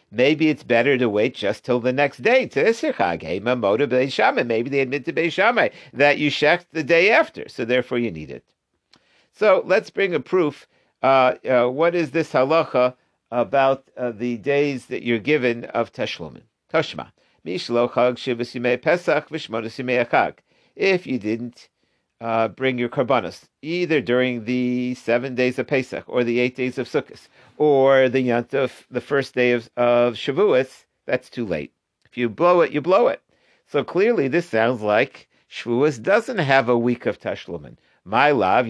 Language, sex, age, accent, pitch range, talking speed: English, male, 50-69, American, 120-155 Hz, 155 wpm